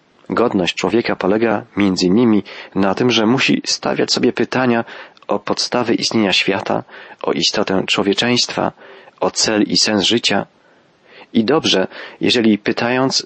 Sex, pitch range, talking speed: male, 105-120 Hz, 125 wpm